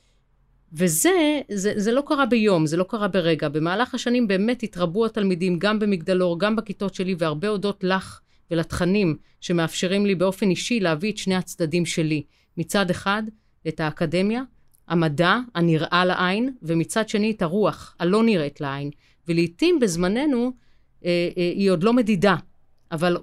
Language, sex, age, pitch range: Hebrew, female, 30-49, 170-220 Hz